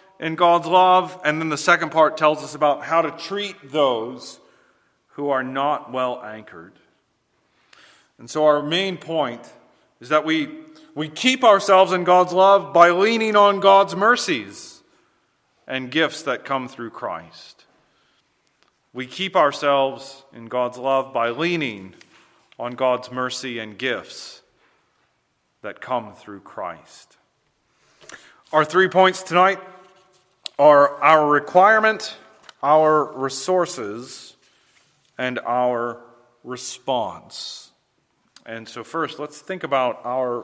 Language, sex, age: English, male, 40-59